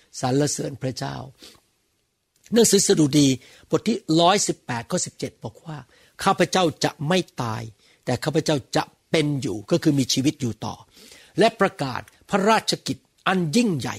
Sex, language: male, Thai